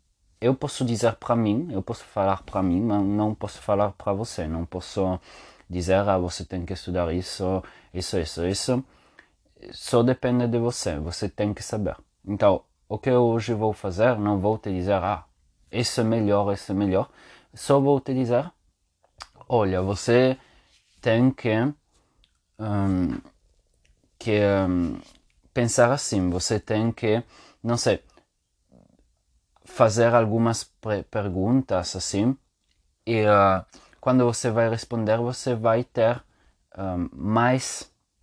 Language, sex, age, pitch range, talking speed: English, male, 20-39, 95-115 Hz, 135 wpm